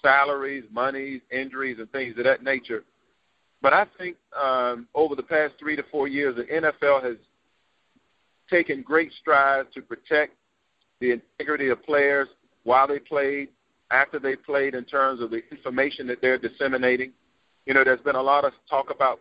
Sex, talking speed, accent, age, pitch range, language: male, 170 wpm, American, 50-69, 125-150 Hz, English